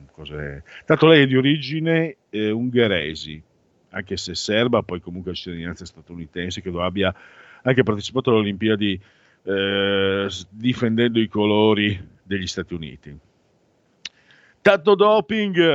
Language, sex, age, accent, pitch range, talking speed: Italian, male, 50-69, native, 100-140 Hz, 115 wpm